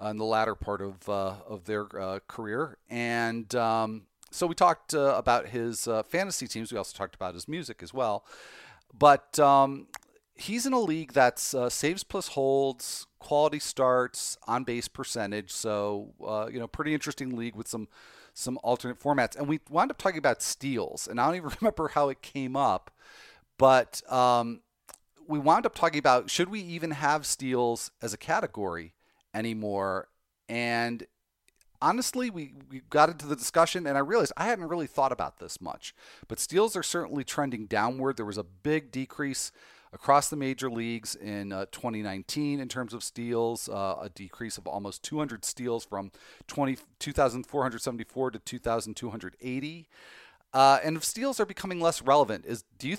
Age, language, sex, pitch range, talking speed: 40-59, English, male, 110-145 Hz, 170 wpm